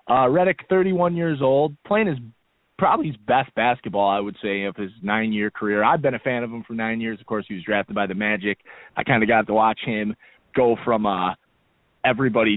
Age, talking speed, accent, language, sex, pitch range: 20-39, 220 wpm, American, English, male, 105-130 Hz